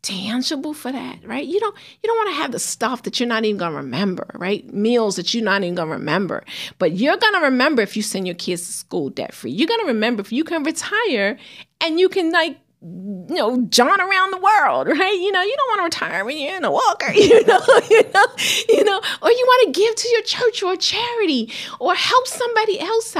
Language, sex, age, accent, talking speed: English, female, 40-59, American, 230 wpm